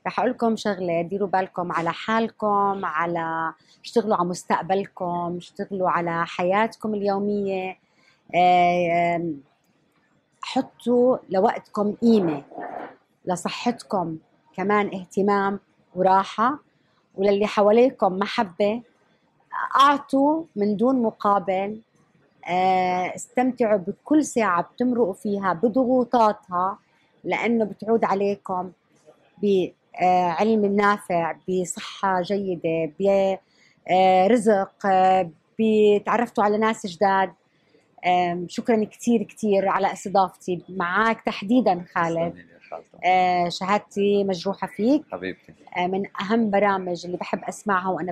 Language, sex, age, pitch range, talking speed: Arabic, female, 30-49, 180-215 Hz, 80 wpm